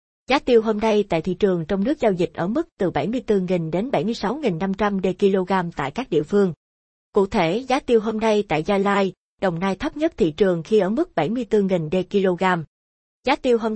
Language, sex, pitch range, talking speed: Vietnamese, female, 185-230 Hz, 195 wpm